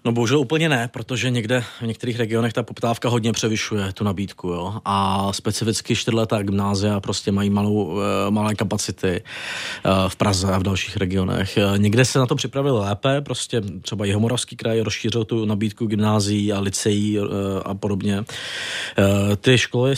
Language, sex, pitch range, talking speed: Czech, male, 105-125 Hz, 155 wpm